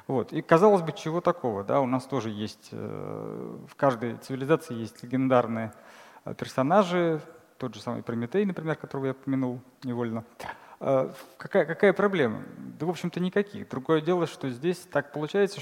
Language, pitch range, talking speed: Russian, 120-160 Hz, 160 wpm